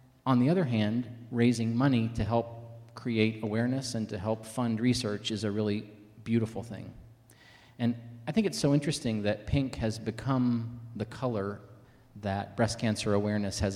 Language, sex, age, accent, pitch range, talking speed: English, male, 40-59, American, 100-120 Hz, 160 wpm